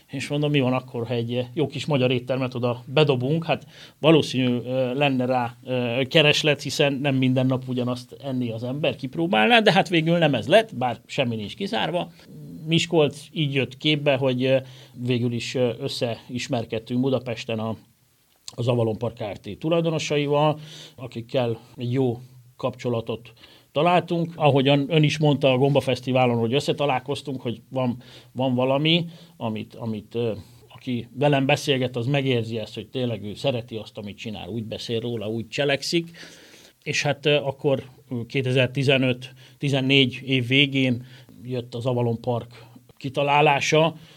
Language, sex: Hungarian, male